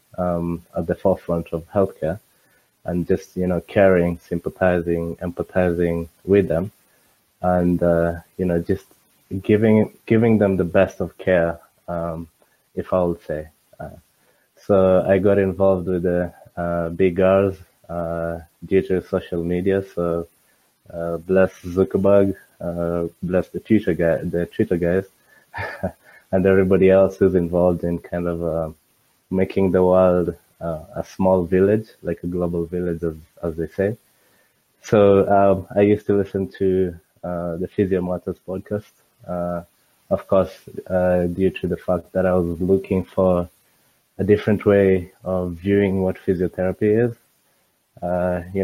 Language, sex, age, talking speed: English, male, 20-39, 145 wpm